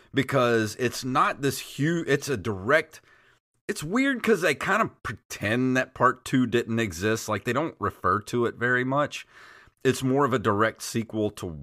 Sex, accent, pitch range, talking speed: male, American, 95-120 Hz, 180 wpm